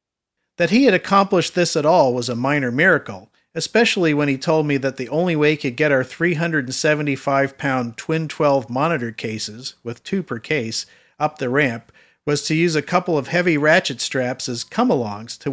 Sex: male